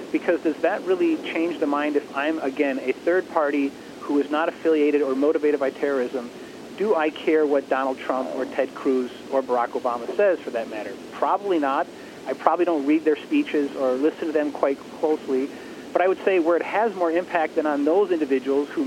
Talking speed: 205 wpm